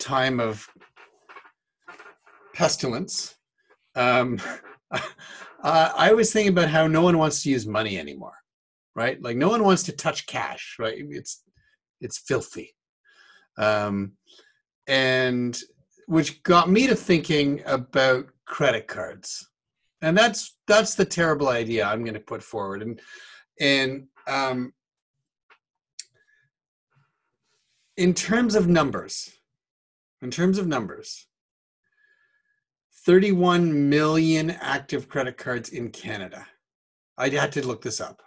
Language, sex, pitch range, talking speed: English, male, 135-200 Hz, 115 wpm